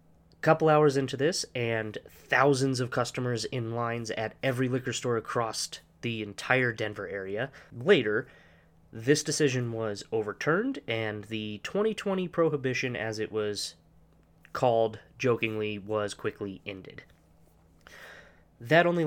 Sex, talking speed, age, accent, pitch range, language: male, 125 wpm, 20-39, American, 105-125 Hz, English